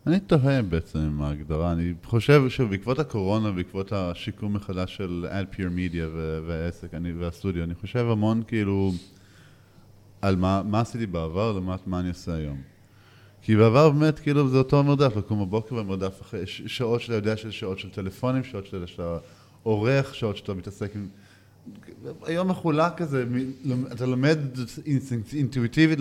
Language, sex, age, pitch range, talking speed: Hebrew, male, 20-39, 95-120 Hz, 145 wpm